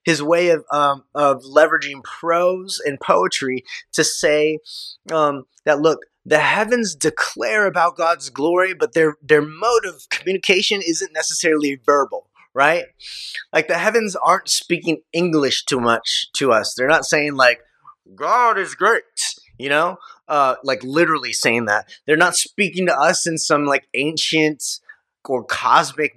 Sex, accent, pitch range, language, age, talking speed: male, American, 145-195 Hz, English, 20-39, 150 wpm